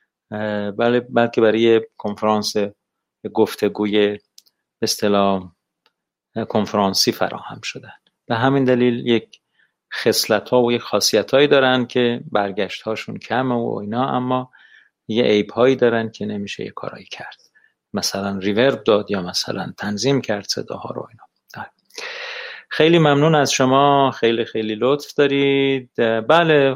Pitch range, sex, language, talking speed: 105-135 Hz, male, Persian, 130 wpm